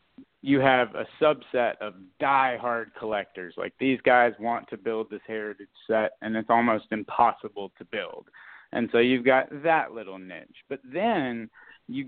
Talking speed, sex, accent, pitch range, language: 165 wpm, male, American, 115-150 Hz, English